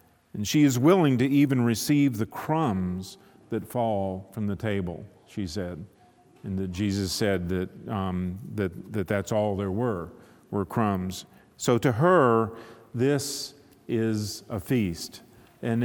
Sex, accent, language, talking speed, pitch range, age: male, American, English, 135 wpm, 100-125 Hz, 50-69